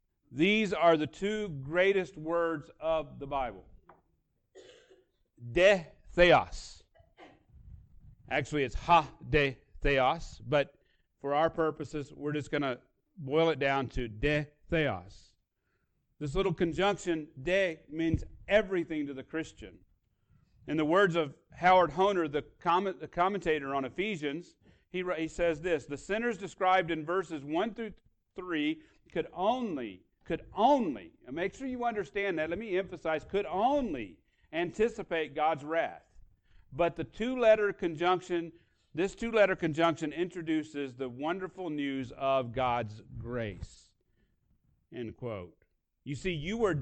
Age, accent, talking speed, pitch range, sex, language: 40-59, American, 125 wpm, 145-190 Hz, male, English